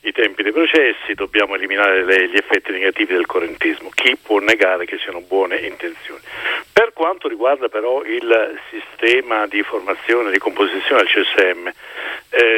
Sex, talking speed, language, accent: male, 155 wpm, Italian, native